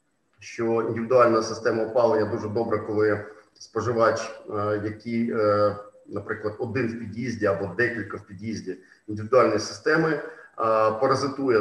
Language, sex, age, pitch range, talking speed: Ukrainian, male, 40-59, 110-140 Hz, 105 wpm